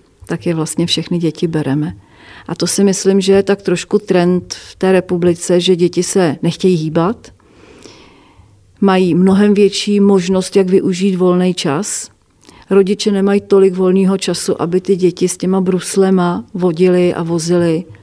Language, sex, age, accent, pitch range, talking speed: Czech, female, 40-59, native, 175-195 Hz, 150 wpm